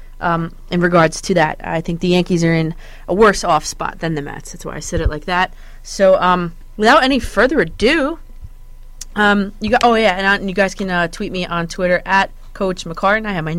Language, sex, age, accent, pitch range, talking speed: English, female, 30-49, American, 165-200 Hz, 230 wpm